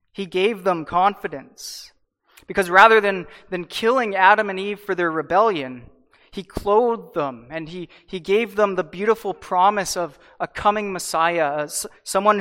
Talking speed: 150 wpm